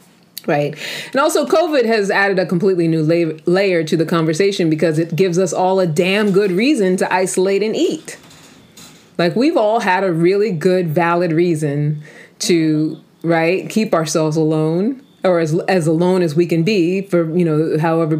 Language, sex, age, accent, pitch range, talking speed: English, female, 30-49, American, 165-200 Hz, 175 wpm